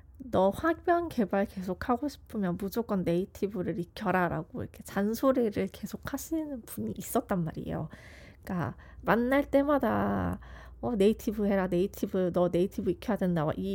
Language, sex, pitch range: Korean, female, 170-240 Hz